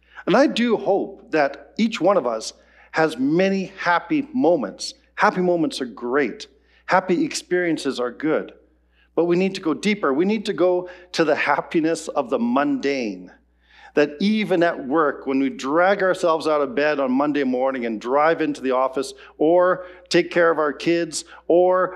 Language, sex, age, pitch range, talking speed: English, male, 50-69, 140-190 Hz, 170 wpm